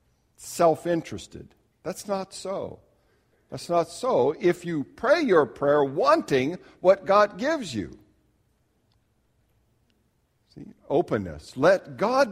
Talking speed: 105 wpm